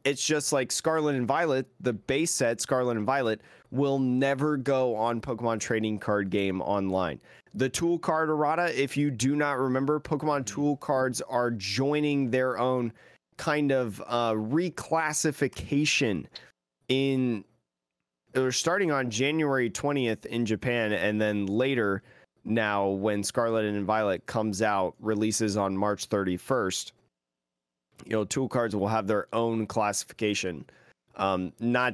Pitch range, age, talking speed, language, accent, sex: 105-135 Hz, 20-39, 140 wpm, English, American, male